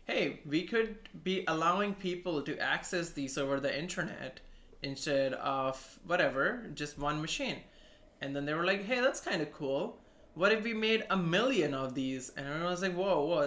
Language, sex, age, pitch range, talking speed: English, male, 20-39, 140-180 Hz, 185 wpm